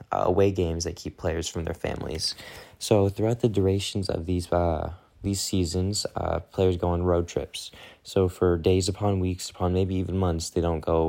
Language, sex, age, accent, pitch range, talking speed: English, male, 20-39, American, 85-100 Hz, 195 wpm